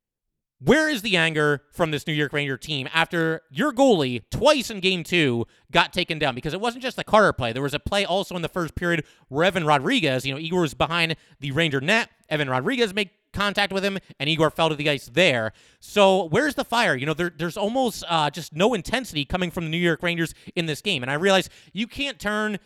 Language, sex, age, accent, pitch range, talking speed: English, male, 30-49, American, 150-195 Hz, 230 wpm